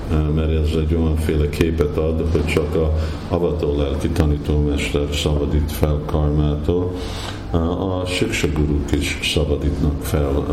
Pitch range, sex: 75-85 Hz, male